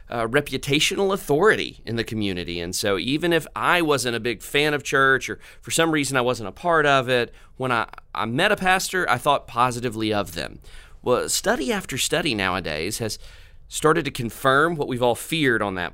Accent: American